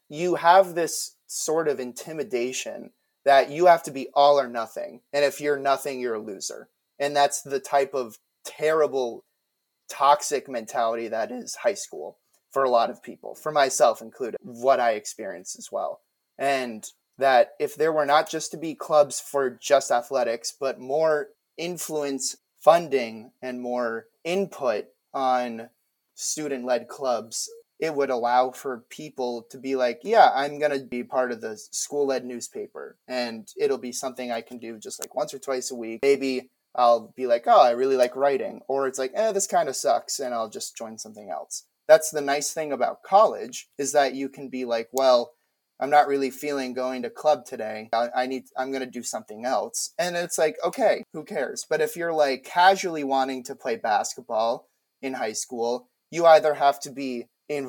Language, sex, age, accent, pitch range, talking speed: English, male, 30-49, American, 125-155 Hz, 185 wpm